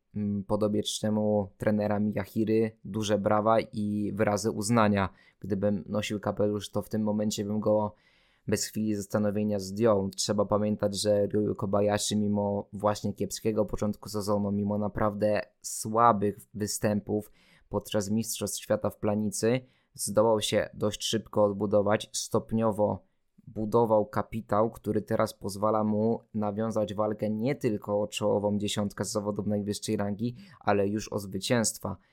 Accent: native